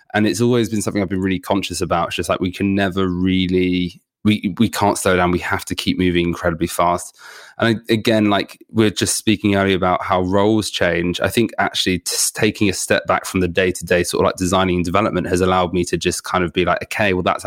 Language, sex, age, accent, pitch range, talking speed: English, male, 20-39, British, 90-110 Hz, 240 wpm